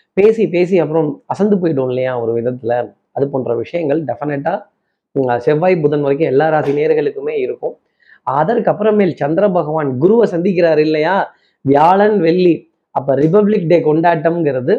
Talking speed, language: 130 wpm, Tamil